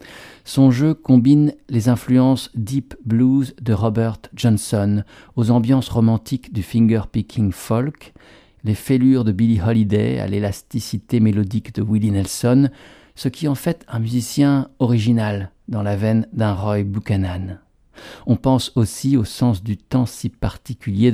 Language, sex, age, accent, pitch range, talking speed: French, male, 50-69, French, 105-130 Hz, 140 wpm